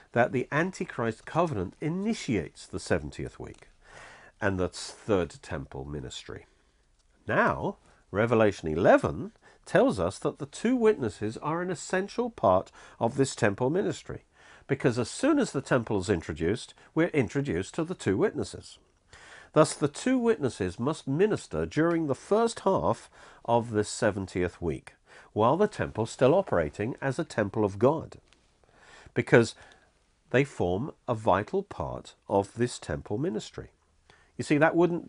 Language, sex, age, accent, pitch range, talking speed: English, male, 50-69, British, 95-145 Hz, 140 wpm